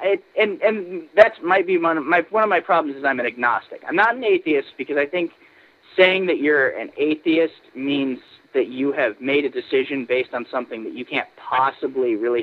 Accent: American